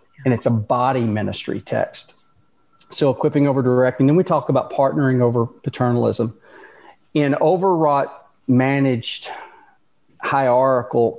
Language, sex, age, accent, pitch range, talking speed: English, male, 40-59, American, 120-140 Hz, 105 wpm